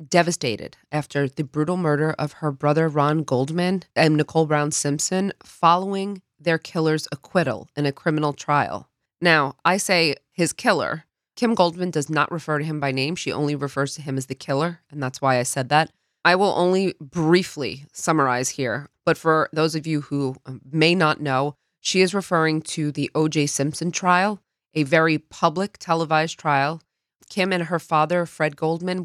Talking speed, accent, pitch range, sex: 175 wpm, American, 145-170 Hz, female